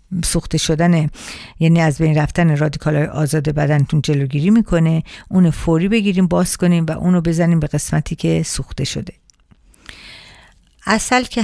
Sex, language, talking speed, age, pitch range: female, Persian, 140 wpm, 50-69, 155-185 Hz